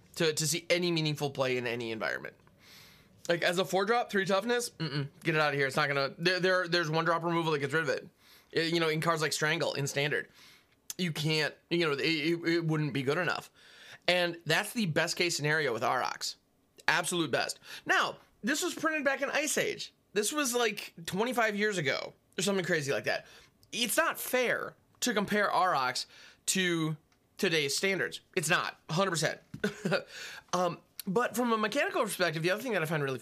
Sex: male